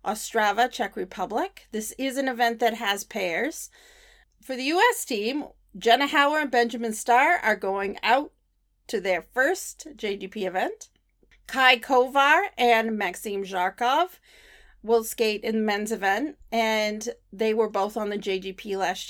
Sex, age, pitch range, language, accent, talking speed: female, 40-59, 205-260 Hz, English, American, 145 wpm